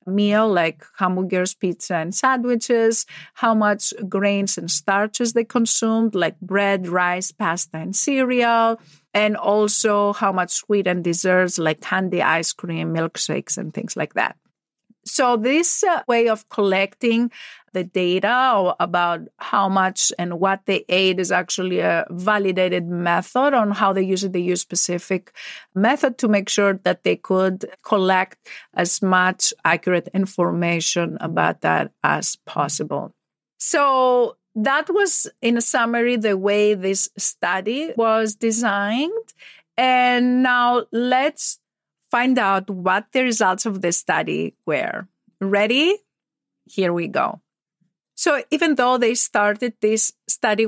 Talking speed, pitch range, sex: 135 wpm, 185-230 Hz, female